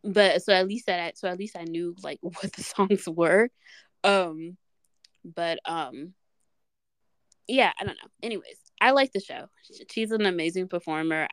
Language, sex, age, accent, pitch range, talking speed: English, female, 20-39, American, 180-240 Hz, 170 wpm